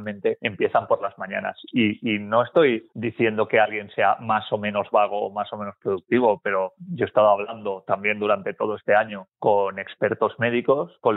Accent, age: Spanish, 30-49